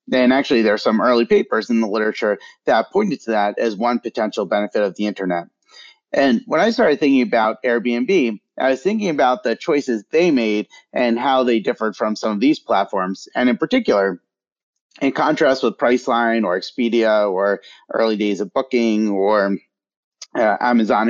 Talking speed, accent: 175 wpm, American